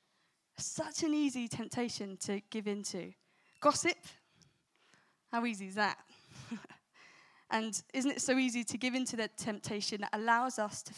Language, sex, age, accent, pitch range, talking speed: English, female, 10-29, British, 205-275 Hz, 155 wpm